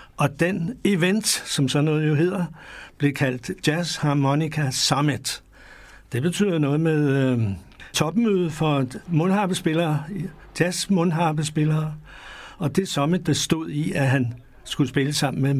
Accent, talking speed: native, 135 wpm